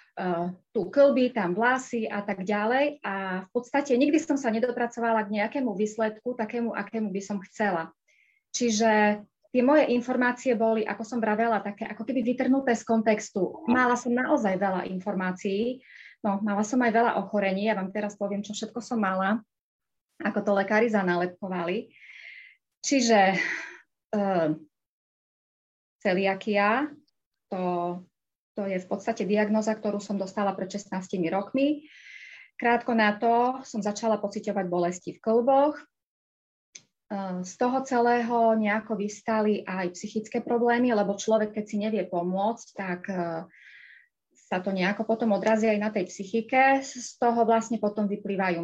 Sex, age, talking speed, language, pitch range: female, 20-39, 140 wpm, Slovak, 195-240 Hz